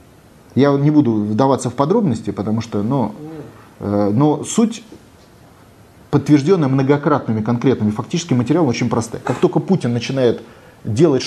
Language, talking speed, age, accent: Russian, 120 wpm, 30-49, native